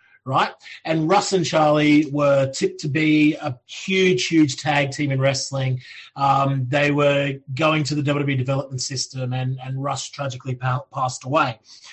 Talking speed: 155 wpm